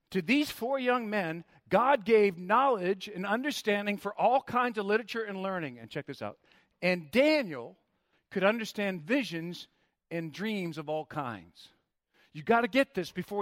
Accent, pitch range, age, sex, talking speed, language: American, 185-245 Hz, 50-69, male, 165 wpm, English